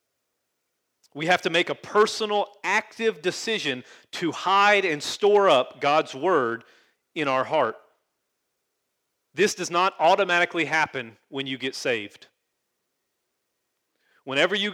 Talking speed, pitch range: 120 wpm, 135-185 Hz